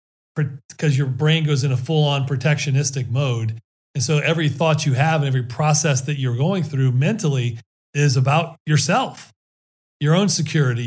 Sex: male